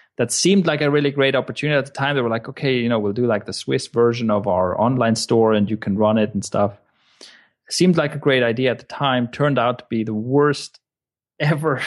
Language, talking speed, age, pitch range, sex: English, 245 wpm, 30-49, 105-130 Hz, male